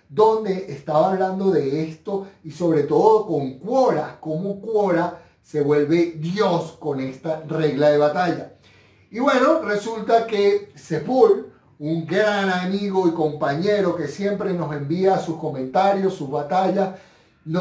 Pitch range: 150-195 Hz